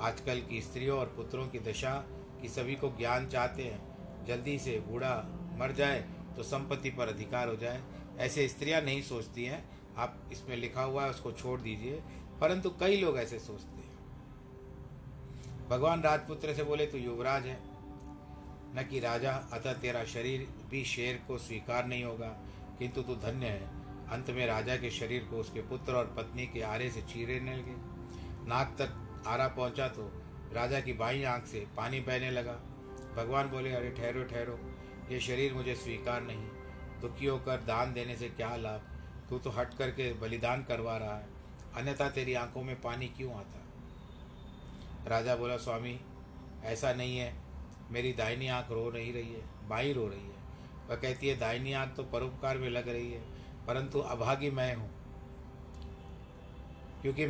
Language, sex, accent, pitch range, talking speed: Hindi, male, native, 115-130 Hz, 170 wpm